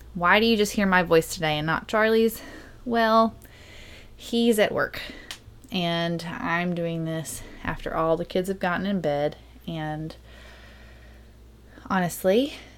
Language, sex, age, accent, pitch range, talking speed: English, female, 20-39, American, 145-175 Hz, 135 wpm